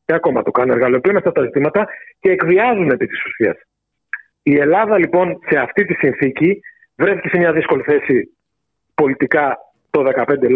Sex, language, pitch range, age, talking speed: male, Greek, 135-200 Hz, 40-59, 165 wpm